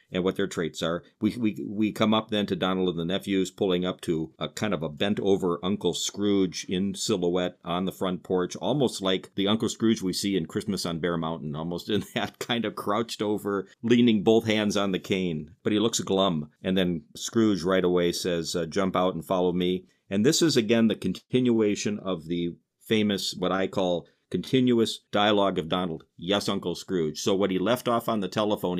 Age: 50-69